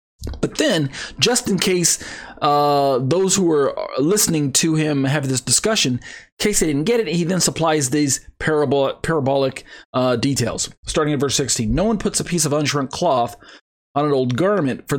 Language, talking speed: English, 185 wpm